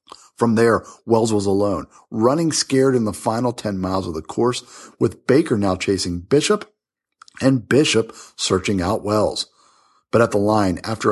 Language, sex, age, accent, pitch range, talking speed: English, male, 50-69, American, 90-115 Hz, 160 wpm